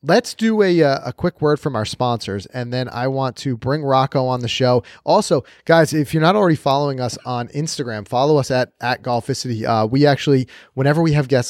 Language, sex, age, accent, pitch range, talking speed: English, male, 30-49, American, 115-140 Hz, 215 wpm